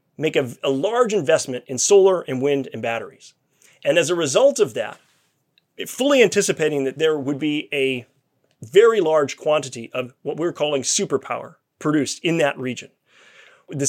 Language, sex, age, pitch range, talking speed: English, male, 30-49, 140-200 Hz, 160 wpm